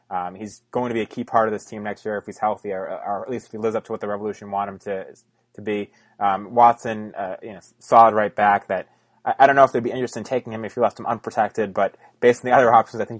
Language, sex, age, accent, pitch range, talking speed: English, male, 20-39, American, 100-125 Hz, 300 wpm